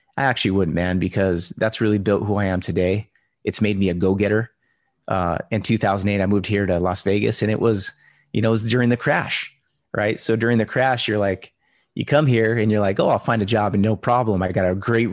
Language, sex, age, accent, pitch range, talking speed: English, male, 30-49, American, 95-115 Hz, 240 wpm